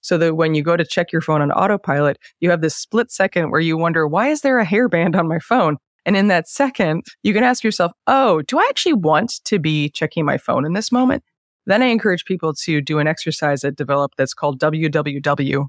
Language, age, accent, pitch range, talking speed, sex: English, 20-39, American, 150-180 Hz, 235 wpm, female